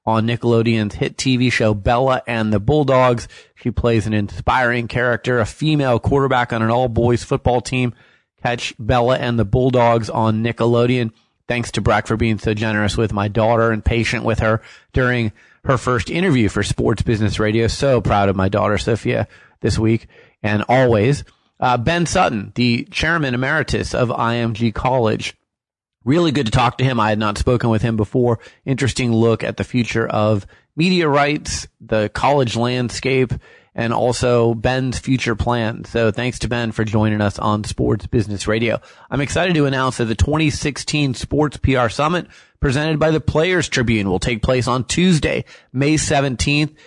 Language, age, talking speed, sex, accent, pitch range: English, 30-49, 170 wpm, male, American, 110-130 Hz